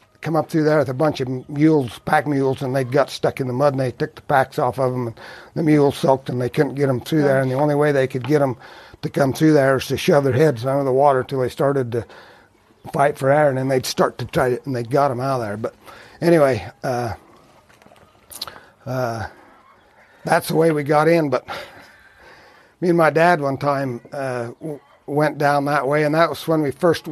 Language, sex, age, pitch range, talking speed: English, male, 60-79, 130-150 Hz, 240 wpm